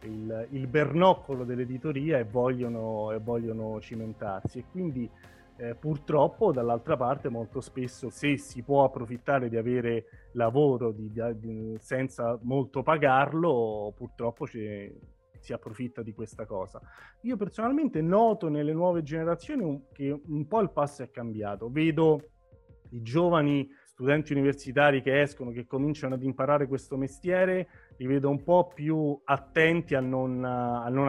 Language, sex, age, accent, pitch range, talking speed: Italian, male, 30-49, native, 115-145 Hz, 140 wpm